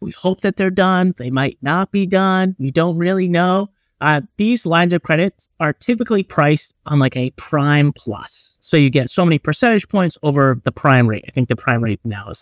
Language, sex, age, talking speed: English, male, 30-49, 215 wpm